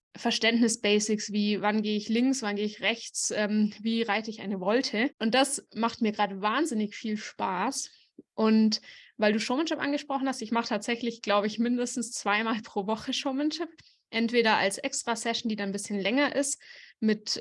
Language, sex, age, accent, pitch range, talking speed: English, female, 20-39, German, 210-260 Hz, 170 wpm